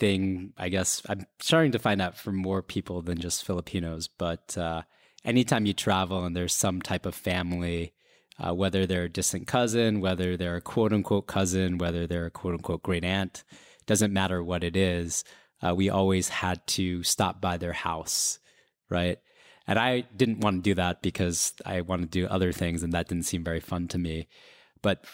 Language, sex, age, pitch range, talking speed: English, male, 20-39, 90-95 Hz, 190 wpm